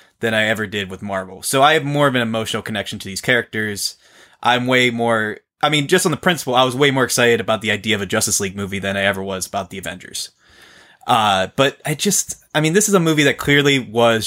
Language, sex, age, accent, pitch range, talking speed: English, male, 20-39, American, 105-140 Hz, 250 wpm